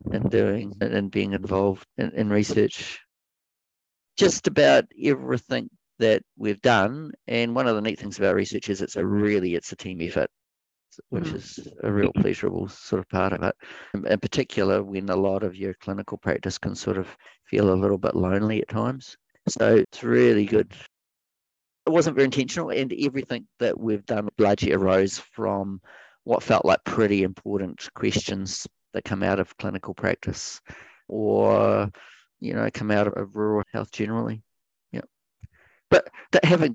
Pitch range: 95-115 Hz